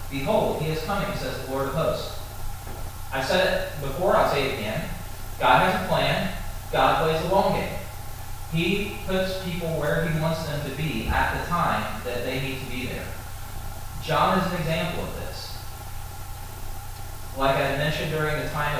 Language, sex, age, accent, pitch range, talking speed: English, male, 30-49, American, 100-160 Hz, 180 wpm